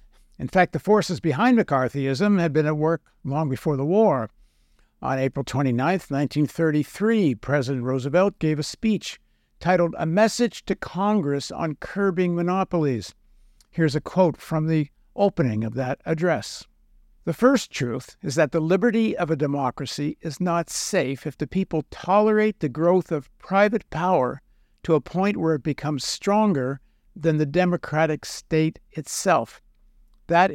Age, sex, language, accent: 60-79, male, English, American